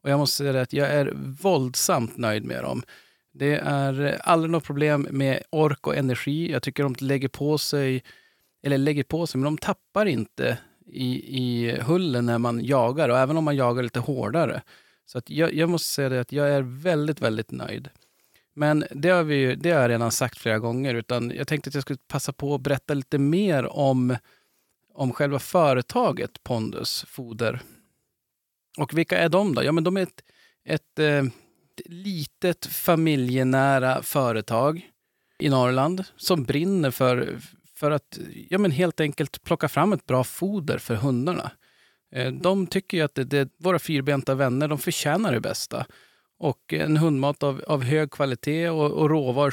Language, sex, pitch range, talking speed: Swedish, male, 130-160 Hz, 175 wpm